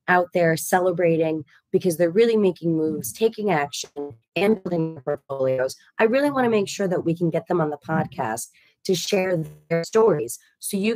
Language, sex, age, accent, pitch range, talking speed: English, female, 30-49, American, 145-180 Hz, 175 wpm